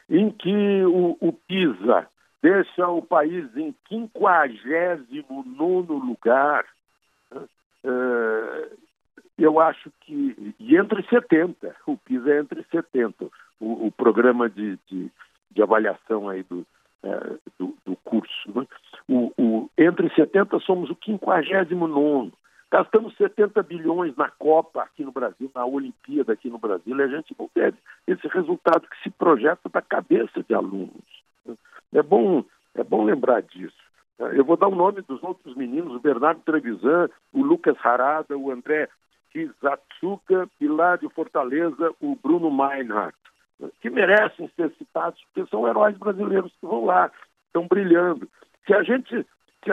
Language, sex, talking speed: Portuguese, male, 140 wpm